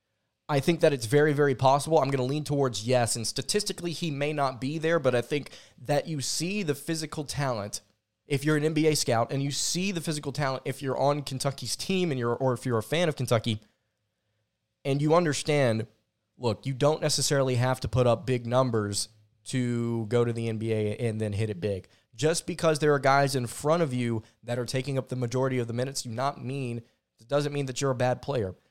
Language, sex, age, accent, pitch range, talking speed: English, male, 20-39, American, 115-140 Hz, 220 wpm